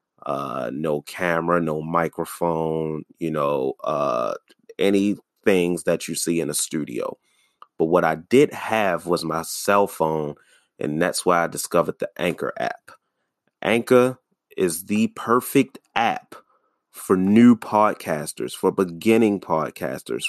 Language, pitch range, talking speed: English, 85-105 Hz, 125 wpm